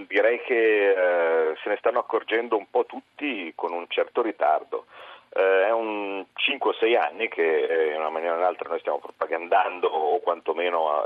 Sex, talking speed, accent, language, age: male, 180 wpm, native, Italian, 40-59